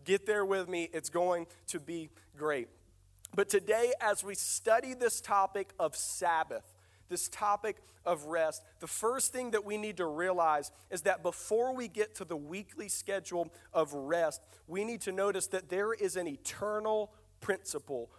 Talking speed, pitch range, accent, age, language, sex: 170 wpm, 160-210 Hz, American, 40-59, English, male